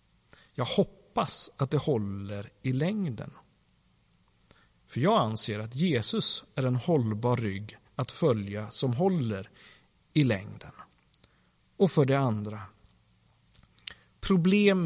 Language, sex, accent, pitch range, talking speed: Swedish, male, native, 110-155 Hz, 110 wpm